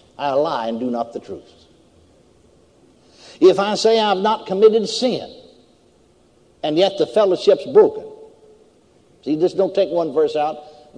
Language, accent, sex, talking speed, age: English, American, male, 155 wpm, 60-79